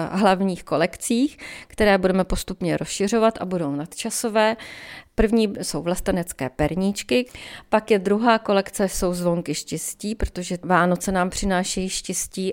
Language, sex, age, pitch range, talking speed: Czech, female, 40-59, 170-215 Hz, 120 wpm